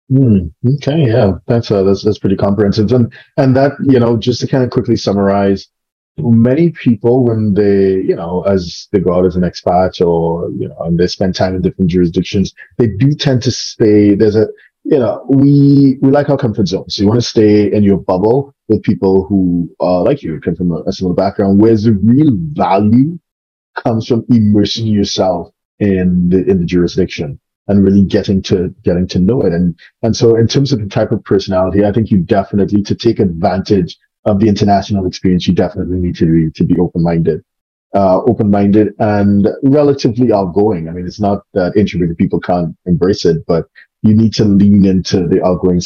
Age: 30-49